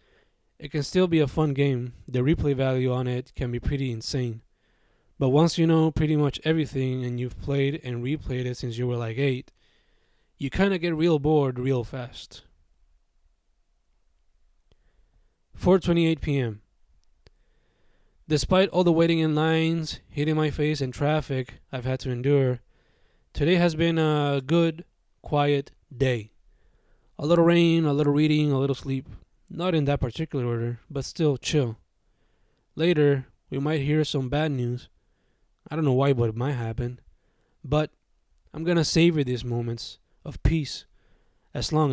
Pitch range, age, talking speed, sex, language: 115-155 Hz, 20-39, 155 wpm, male, Spanish